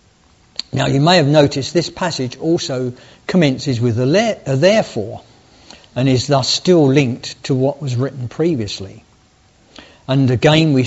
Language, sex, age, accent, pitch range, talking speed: English, male, 50-69, British, 120-150 Hz, 145 wpm